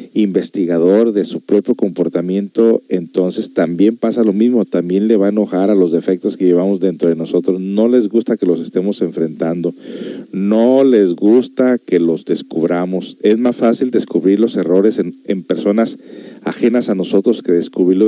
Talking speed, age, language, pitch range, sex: 165 wpm, 50-69, Spanish, 90-115 Hz, male